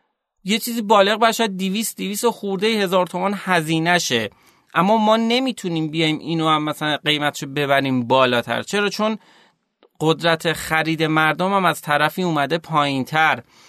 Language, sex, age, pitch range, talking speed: Persian, male, 30-49, 155-195 Hz, 135 wpm